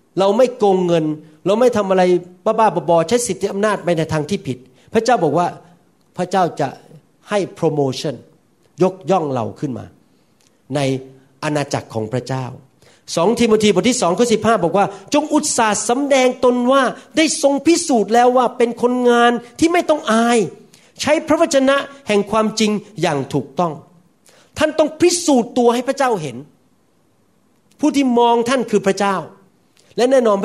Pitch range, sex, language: 185-265 Hz, male, Thai